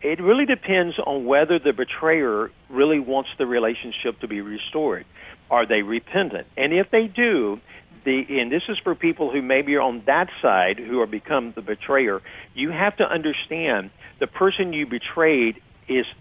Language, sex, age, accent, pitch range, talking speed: English, male, 50-69, American, 115-160 Hz, 175 wpm